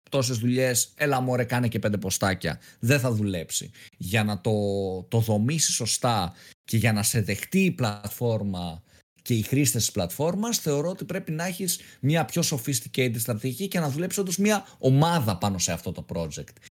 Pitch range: 110-170 Hz